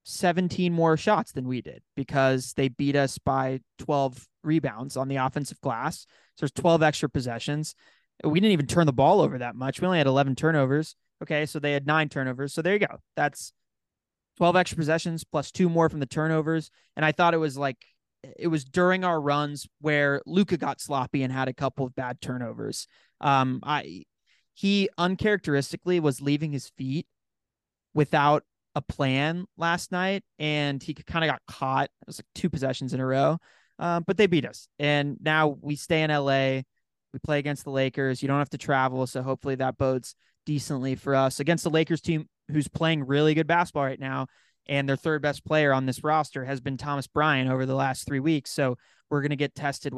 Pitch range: 135-155 Hz